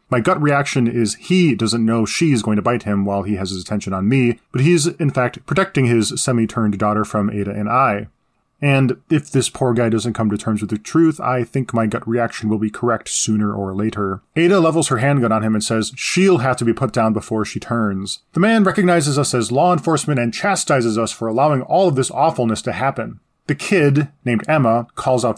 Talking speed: 225 wpm